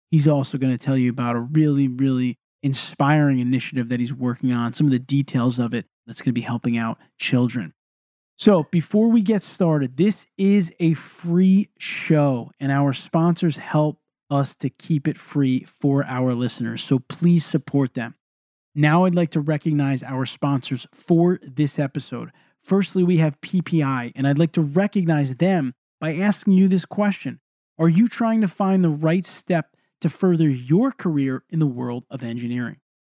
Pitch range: 135-185 Hz